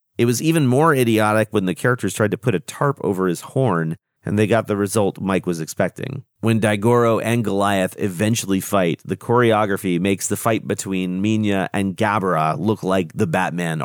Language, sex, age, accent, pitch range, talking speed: English, male, 40-59, American, 95-125 Hz, 185 wpm